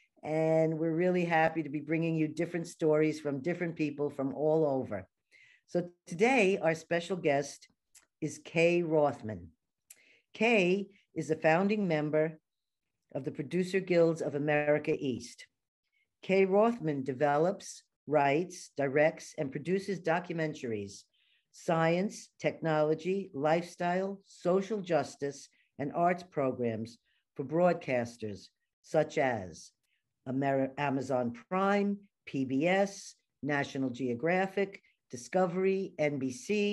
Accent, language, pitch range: American, English, 140-180 Hz